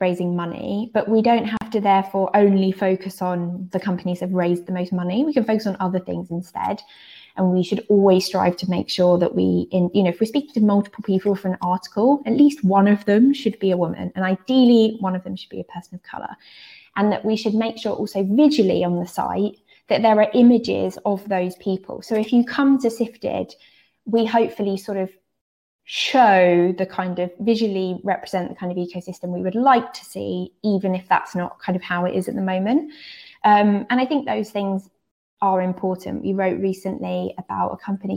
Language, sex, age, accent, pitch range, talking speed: English, female, 20-39, British, 185-220 Hz, 215 wpm